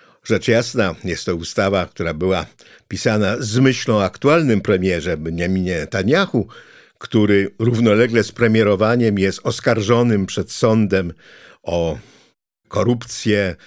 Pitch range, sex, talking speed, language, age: 100-125 Hz, male, 110 wpm, Polish, 50-69